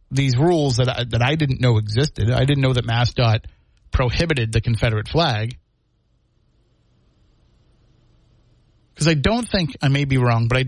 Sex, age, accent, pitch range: male, 30-49, American, 115-145 Hz